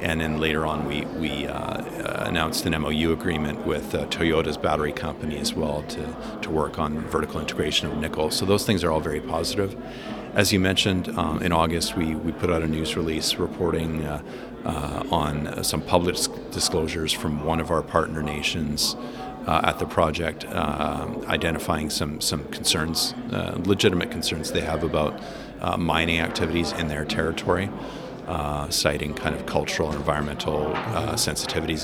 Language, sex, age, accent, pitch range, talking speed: English, male, 40-59, American, 75-85 Hz, 170 wpm